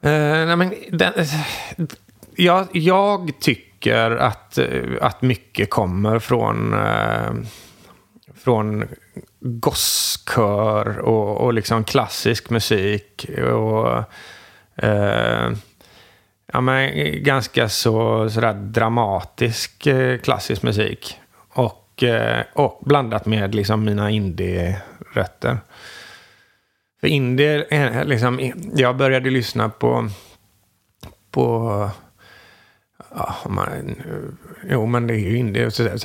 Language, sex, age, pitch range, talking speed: English, male, 30-49, 100-130 Hz, 95 wpm